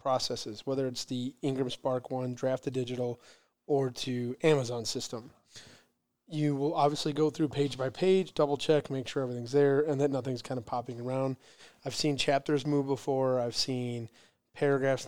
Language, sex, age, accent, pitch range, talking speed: English, male, 30-49, American, 130-155 Hz, 160 wpm